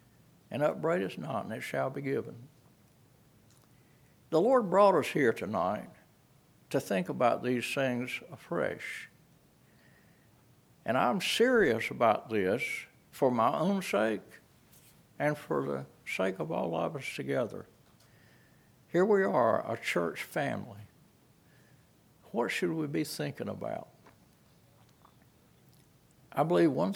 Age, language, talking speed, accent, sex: 60-79, English, 120 wpm, American, male